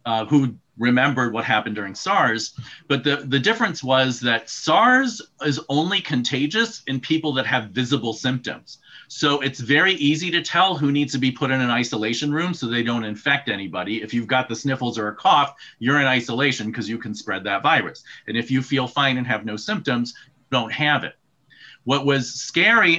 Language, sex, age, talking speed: English, male, 40-59, 195 wpm